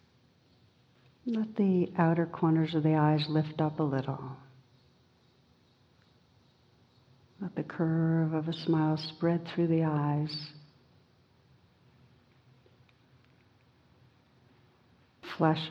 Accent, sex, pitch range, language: American, female, 125-160 Hz, English